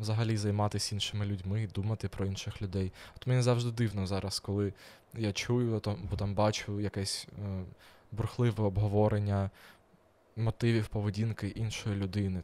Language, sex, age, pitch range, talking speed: Ukrainian, male, 20-39, 100-120 Hz, 125 wpm